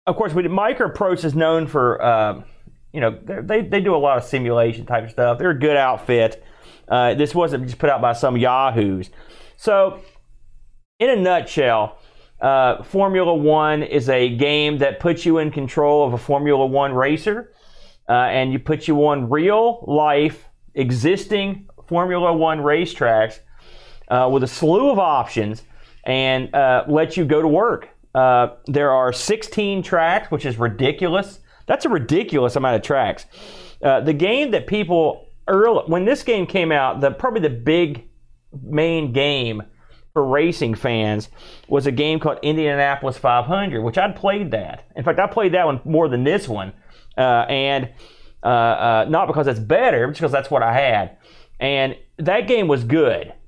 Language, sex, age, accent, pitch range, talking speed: English, male, 40-59, American, 125-170 Hz, 170 wpm